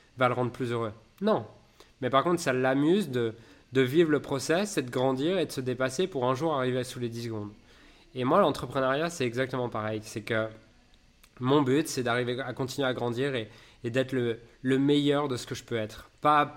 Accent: French